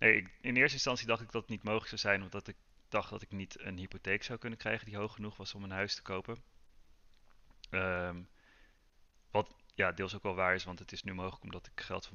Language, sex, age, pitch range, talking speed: Dutch, male, 30-49, 90-105 Hz, 240 wpm